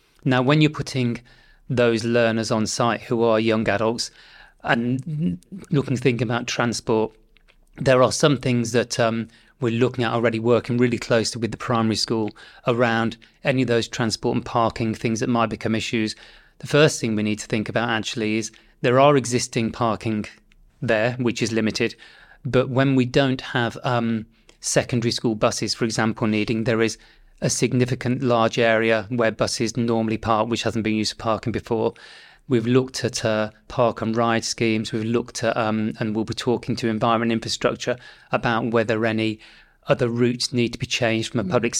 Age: 30-49